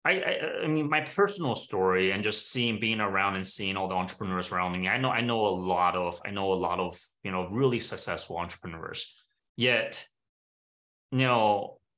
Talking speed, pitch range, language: 195 wpm, 100-135 Hz, English